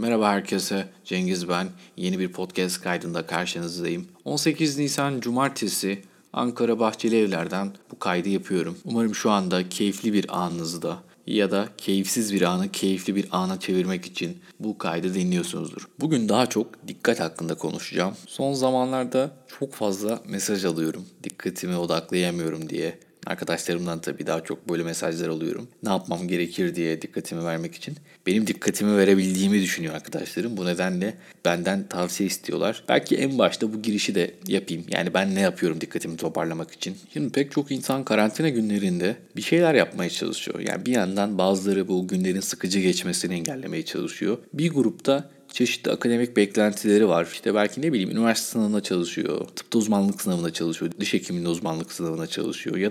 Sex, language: male, Turkish